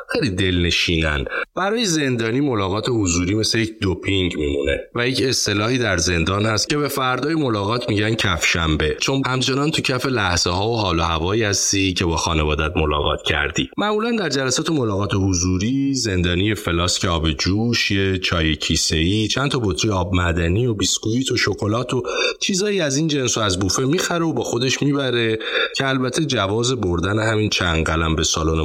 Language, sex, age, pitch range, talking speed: Persian, male, 30-49, 85-130 Hz, 170 wpm